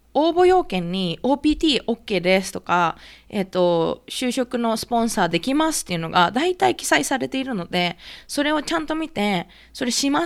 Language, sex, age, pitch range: Japanese, female, 20-39, 185-260 Hz